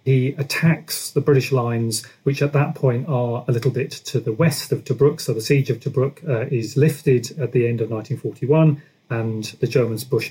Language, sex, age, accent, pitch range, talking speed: English, male, 40-59, British, 125-145 Hz, 205 wpm